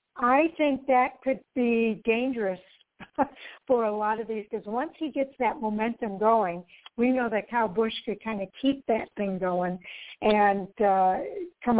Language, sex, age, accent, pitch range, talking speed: English, female, 60-79, American, 210-275 Hz, 170 wpm